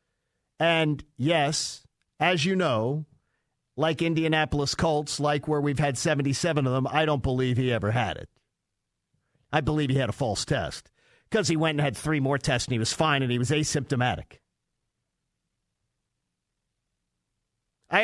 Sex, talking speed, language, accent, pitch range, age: male, 155 wpm, English, American, 125-160 Hz, 50-69